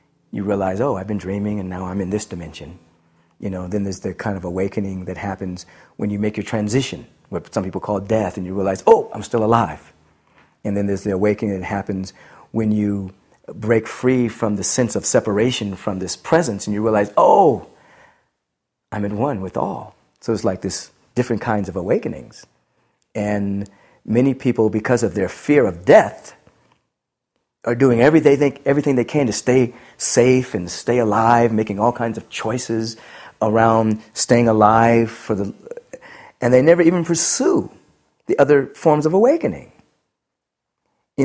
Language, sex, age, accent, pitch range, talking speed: English, male, 40-59, American, 100-140 Hz, 175 wpm